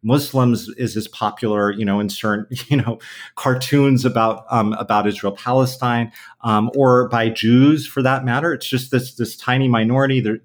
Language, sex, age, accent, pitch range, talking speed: English, male, 30-49, American, 105-130 Hz, 170 wpm